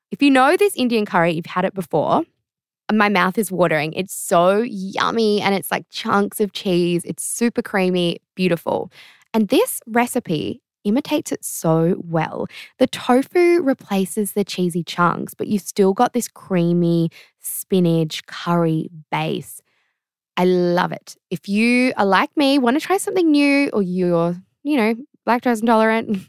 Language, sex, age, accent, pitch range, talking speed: English, female, 10-29, Australian, 185-265 Hz, 155 wpm